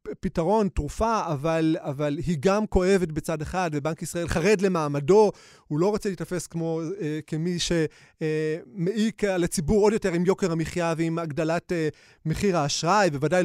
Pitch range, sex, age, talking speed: 165-200 Hz, male, 30-49, 145 wpm